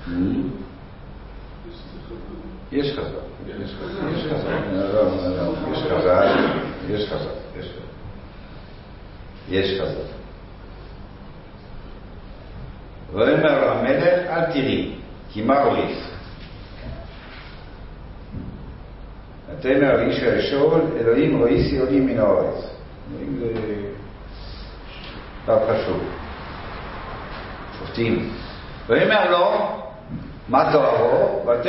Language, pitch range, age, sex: Hebrew, 95-140 Hz, 60-79, male